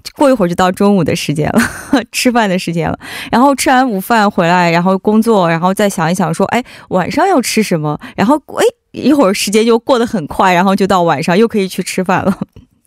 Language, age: Korean, 20-39